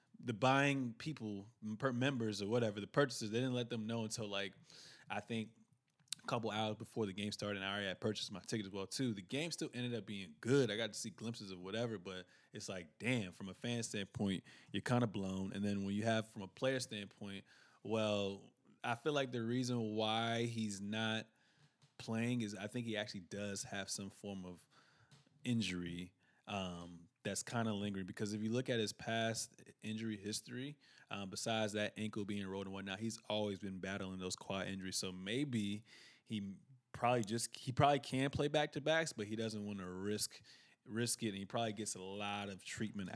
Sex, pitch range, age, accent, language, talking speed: male, 100-120 Hz, 20-39, American, English, 205 wpm